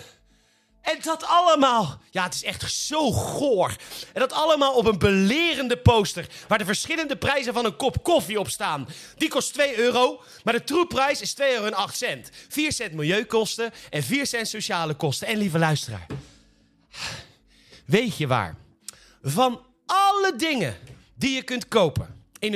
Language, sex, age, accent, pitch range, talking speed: Dutch, male, 40-59, Dutch, 195-275 Hz, 155 wpm